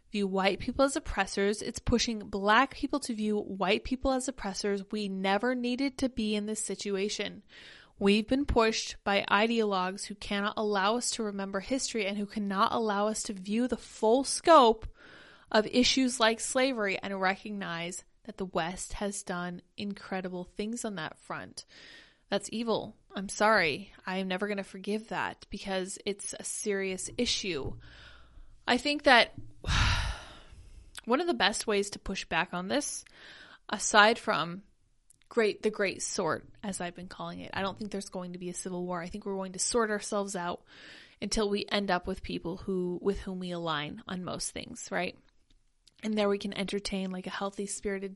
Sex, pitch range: female, 190-220 Hz